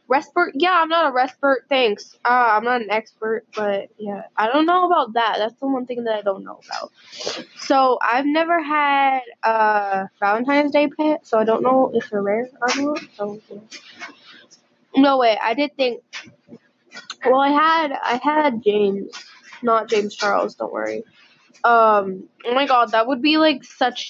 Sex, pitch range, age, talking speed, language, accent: female, 220-275 Hz, 10-29, 180 wpm, English, American